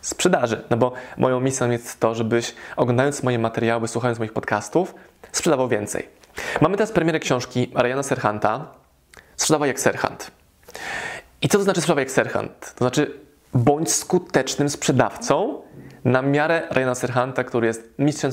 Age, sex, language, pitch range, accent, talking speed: 20-39, male, Polish, 125-150 Hz, native, 145 wpm